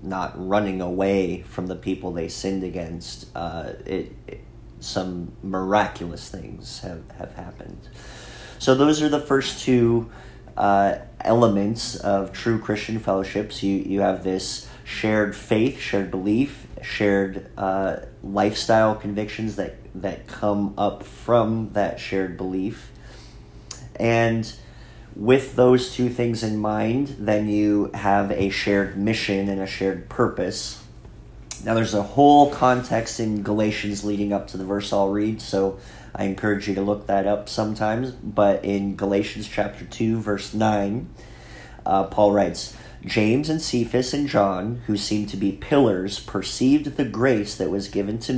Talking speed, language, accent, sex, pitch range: 145 wpm, English, American, male, 100-115 Hz